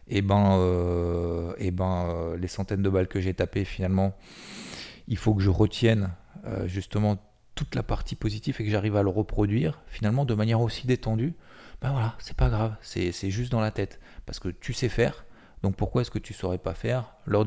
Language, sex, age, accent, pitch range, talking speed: French, male, 30-49, French, 95-115 Hz, 215 wpm